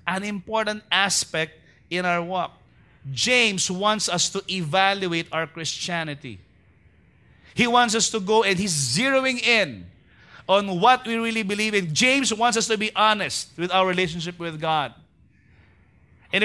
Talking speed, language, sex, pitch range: 145 wpm, English, male, 135-195 Hz